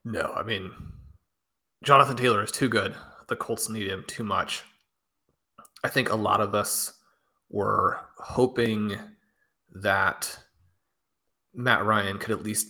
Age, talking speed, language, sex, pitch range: 30-49, 130 wpm, English, male, 100-120 Hz